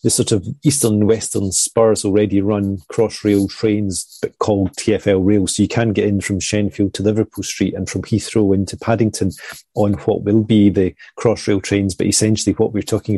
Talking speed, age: 180 wpm, 30-49